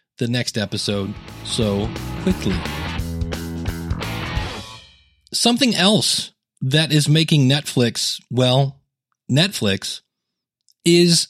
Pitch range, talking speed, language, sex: 125-175 Hz, 75 wpm, English, male